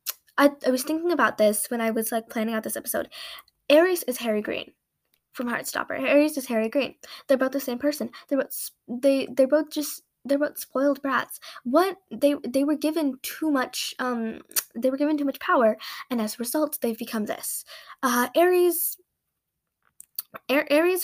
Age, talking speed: 10-29, 180 wpm